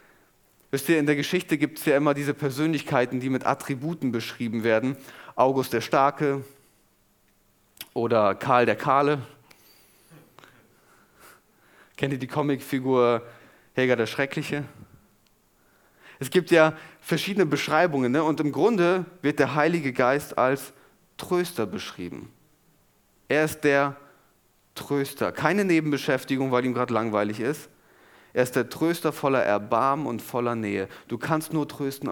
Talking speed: 130 wpm